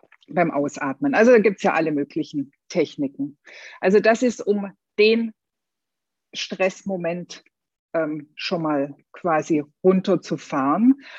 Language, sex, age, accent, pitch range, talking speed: German, female, 50-69, German, 190-250 Hz, 115 wpm